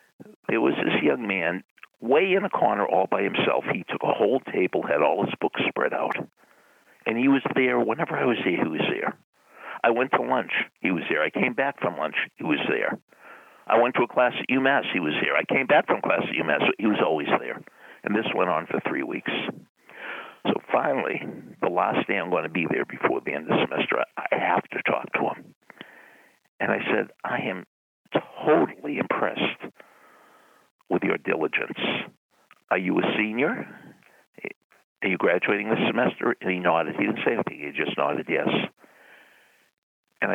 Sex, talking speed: male, 195 wpm